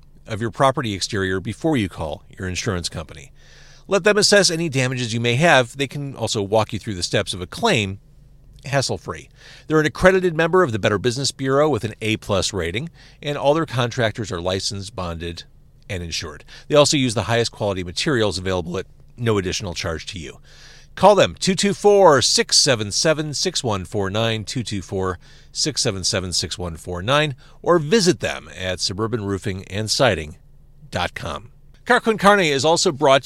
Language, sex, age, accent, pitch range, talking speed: English, male, 40-59, American, 105-155 Hz, 145 wpm